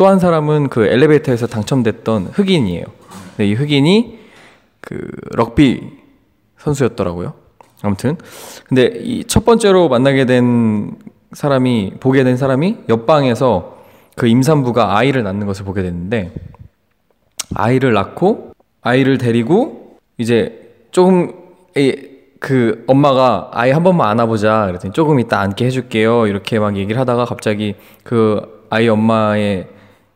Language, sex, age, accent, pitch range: Korean, male, 20-39, native, 105-130 Hz